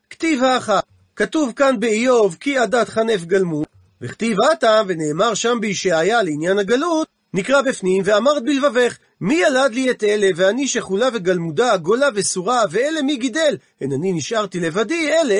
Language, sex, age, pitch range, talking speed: Hebrew, male, 40-59, 195-275 Hz, 150 wpm